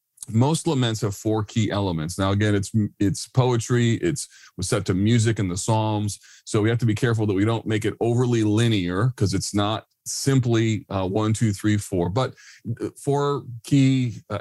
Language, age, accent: English, 40-59, American